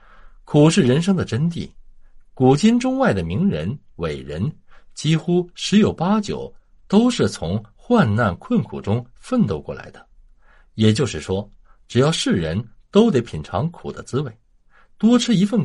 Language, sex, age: Chinese, male, 60-79